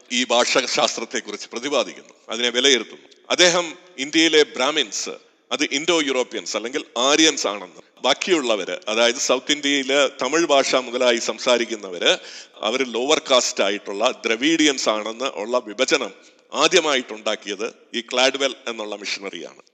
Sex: male